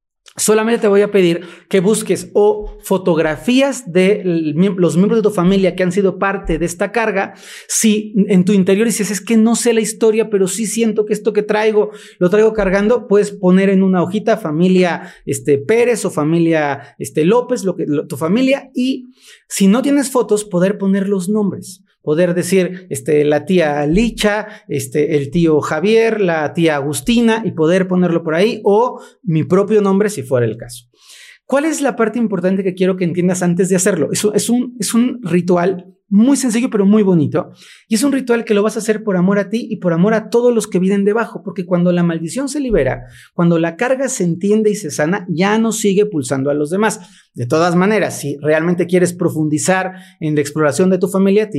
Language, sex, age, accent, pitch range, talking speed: Spanish, male, 40-59, Mexican, 165-215 Hz, 200 wpm